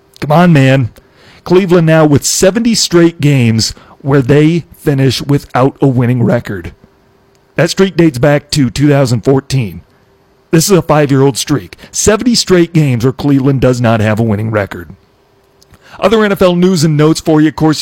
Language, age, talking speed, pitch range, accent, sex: English, 40-59, 160 wpm, 120-150 Hz, American, male